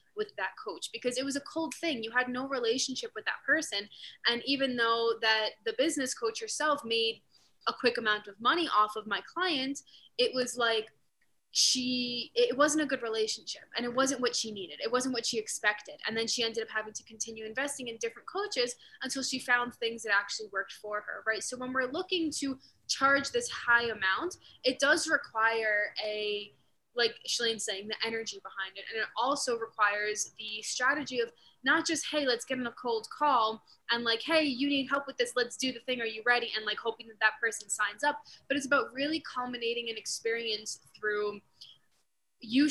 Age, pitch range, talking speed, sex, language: 10-29, 220-270 Hz, 200 wpm, female, English